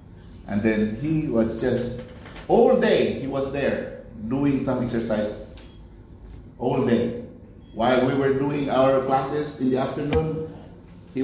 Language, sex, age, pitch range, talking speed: English, male, 50-69, 120-180 Hz, 135 wpm